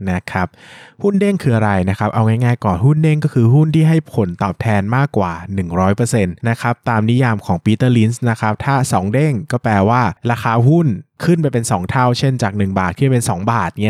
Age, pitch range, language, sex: 20-39, 110-140 Hz, Thai, male